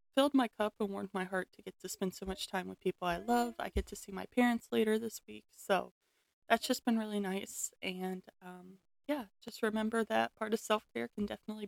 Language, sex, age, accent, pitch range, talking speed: English, female, 20-39, American, 195-240 Hz, 225 wpm